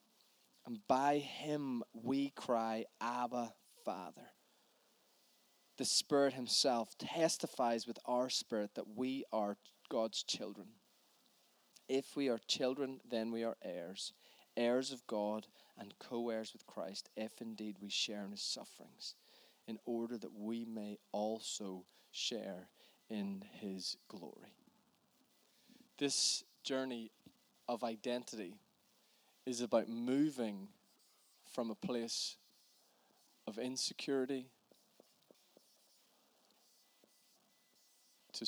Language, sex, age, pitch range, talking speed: Danish, male, 20-39, 110-135 Hz, 100 wpm